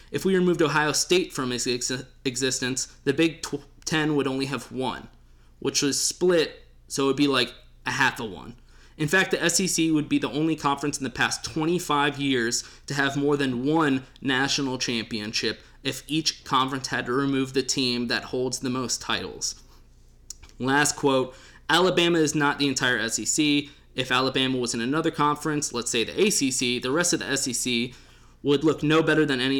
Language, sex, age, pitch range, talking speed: English, male, 20-39, 125-150 Hz, 180 wpm